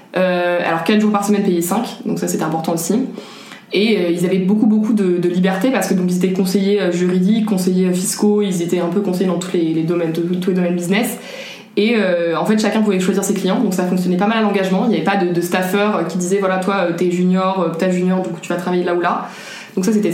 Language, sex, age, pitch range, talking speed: French, female, 20-39, 180-205 Hz, 260 wpm